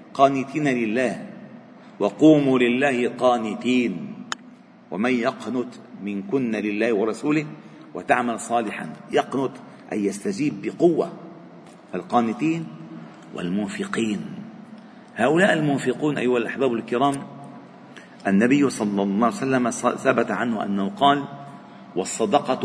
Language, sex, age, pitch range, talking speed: Arabic, male, 40-59, 130-220 Hz, 85 wpm